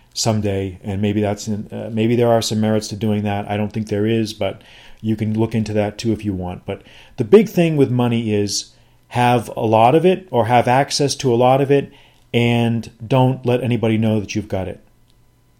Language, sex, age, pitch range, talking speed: English, male, 40-59, 105-125 Hz, 220 wpm